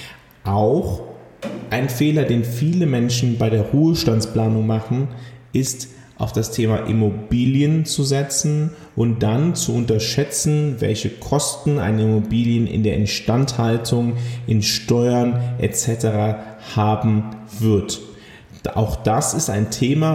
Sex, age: male, 30-49